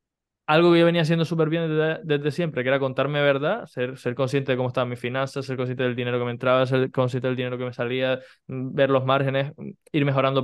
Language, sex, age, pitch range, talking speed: Spanish, male, 20-39, 125-145 Hz, 235 wpm